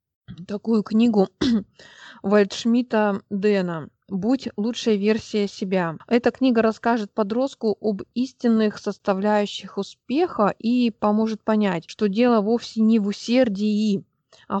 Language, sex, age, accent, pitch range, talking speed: Russian, female, 20-39, native, 185-225 Hz, 105 wpm